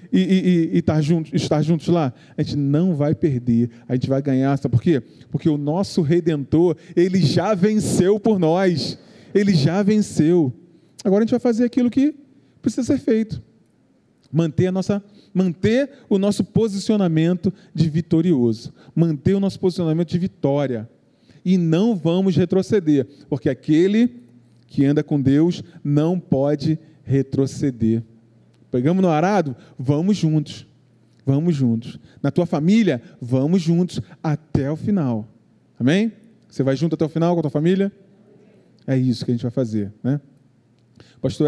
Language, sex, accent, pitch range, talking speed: Portuguese, male, Brazilian, 140-185 Hz, 150 wpm